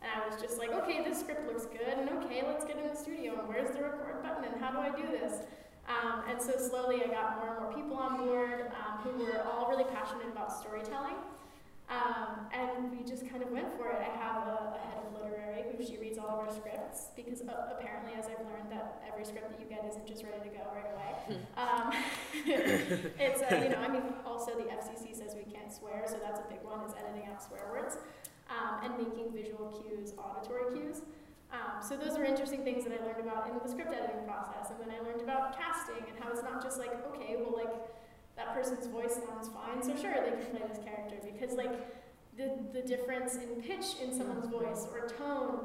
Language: English